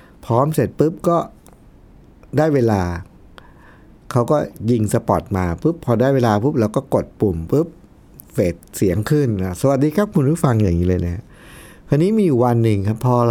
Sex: male